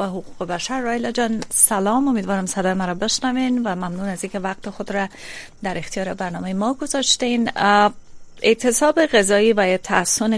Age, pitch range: 30-49, 180-220 Hz